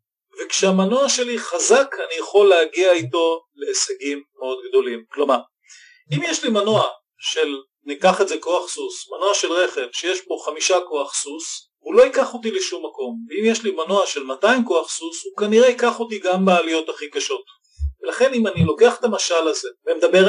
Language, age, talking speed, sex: Hebrew, 40-59, 175 wpm, male